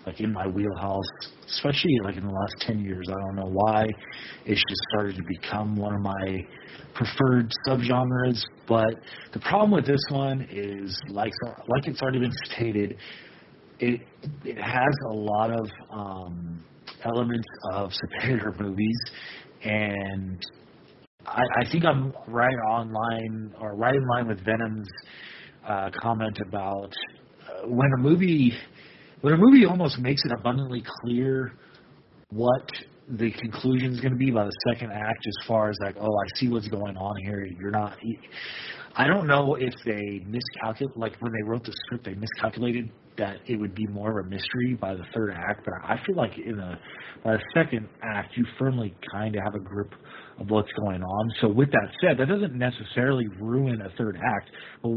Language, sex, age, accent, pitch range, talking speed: English, male, 40-59, American, 100-125 Hz, 175 wpm